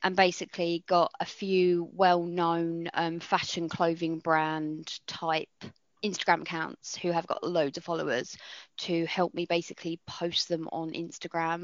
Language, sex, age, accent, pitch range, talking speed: English, female, 20-39, British, 170-205 Hz, 140 wpm